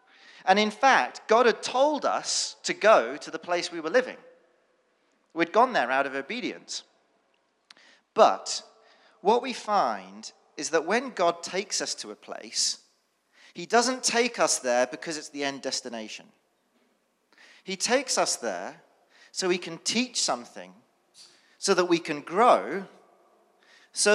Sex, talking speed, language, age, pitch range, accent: male, 145 wpm, English, 40-59, 165-250 Hz, British